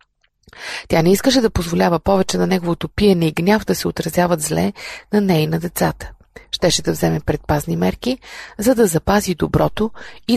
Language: Bulgarian